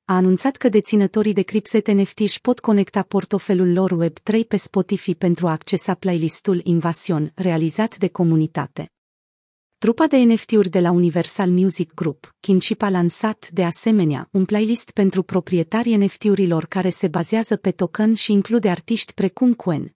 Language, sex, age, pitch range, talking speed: Romanian, female, 40-59, 180-215 Hz, 150 wpm